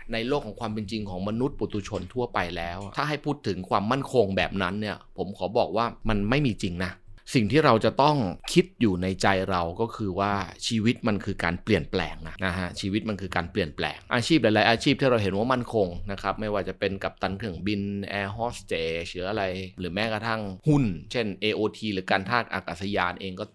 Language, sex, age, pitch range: Thai, male, 20-39, 95-115 Hz